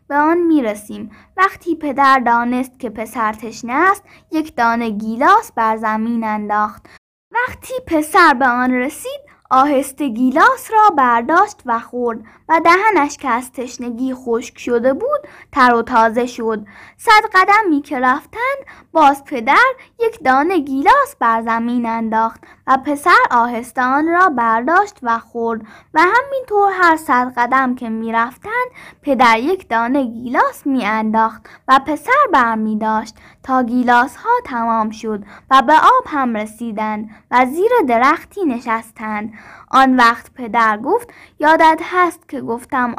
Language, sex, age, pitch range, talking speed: Persian, female, 10-29, 230-305 Hz, 135 wpm